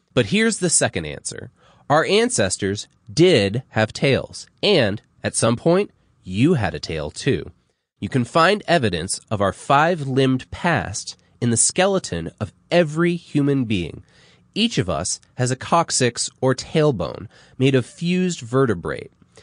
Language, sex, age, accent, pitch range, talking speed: English, male, 30-49, American, 105-155 Hz, 140 wpm